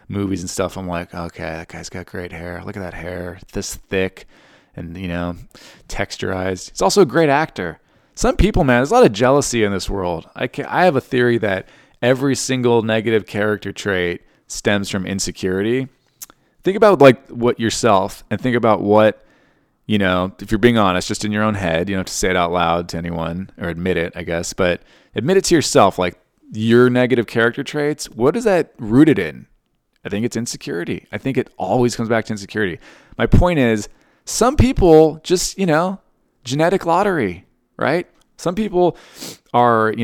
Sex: male